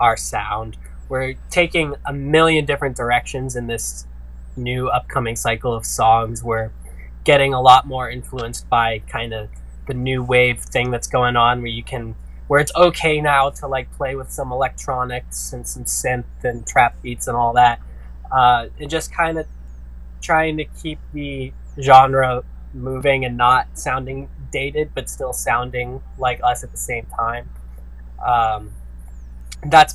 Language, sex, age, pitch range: English, male, 10-29, 110-130 Hz